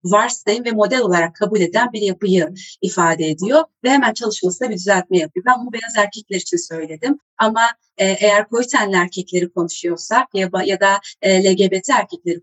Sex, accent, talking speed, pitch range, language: female, native, 150 wpm, 180-250 Hz, Turkish